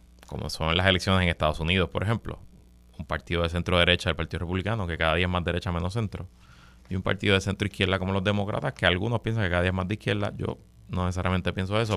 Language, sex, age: Spanish, male, 30-49